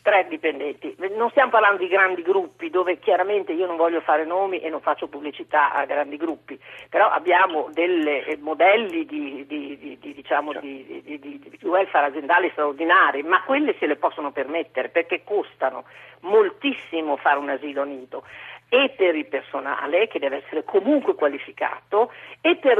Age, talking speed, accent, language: 50-69, 160 wpm, native, Italian